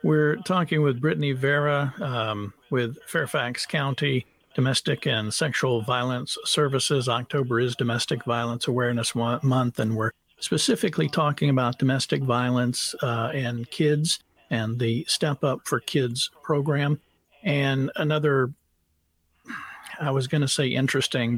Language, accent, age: English, American, 50-69